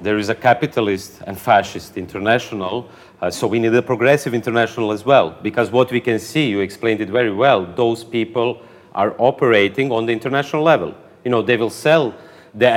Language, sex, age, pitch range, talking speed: Hungarian, male, 40-59, 105-130 Hz, 190 wpm